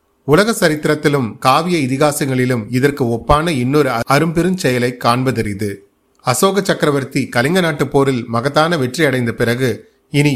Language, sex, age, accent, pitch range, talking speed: Tamil, male, 30-49, native, 120-150 Hz, 115 wpm